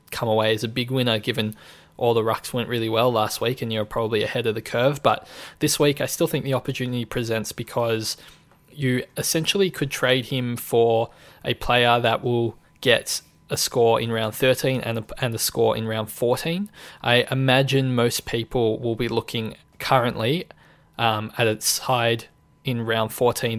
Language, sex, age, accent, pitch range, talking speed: English, male, 20-39, Australian, 115-135 Hz, 180 wpm